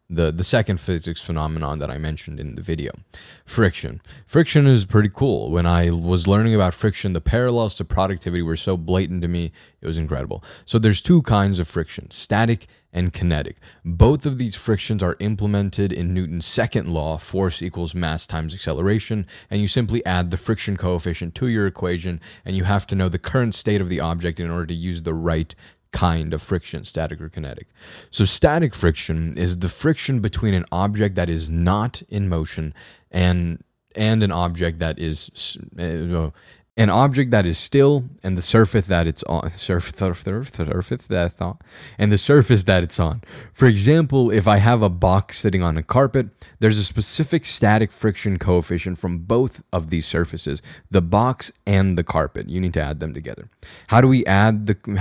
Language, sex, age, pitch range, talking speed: English, male, 20-39, 85-110 Hz, 190 wpm